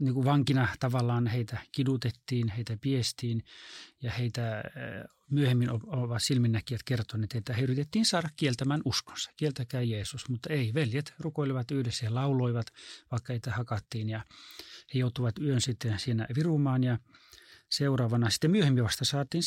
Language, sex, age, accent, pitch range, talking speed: Finnish, male, 30-49, native, 115-145 Hz, 140 wpm